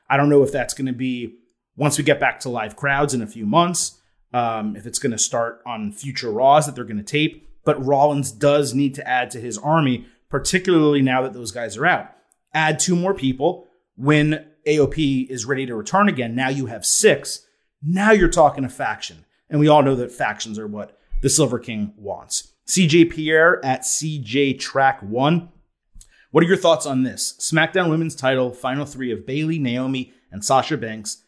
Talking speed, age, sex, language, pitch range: 200 wpm, 30-49, male, English, 125-150 Hz